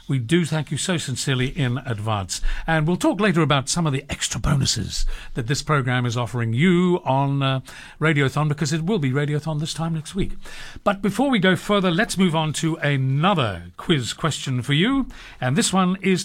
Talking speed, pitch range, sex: 200 wpm, 130-175 Hz, male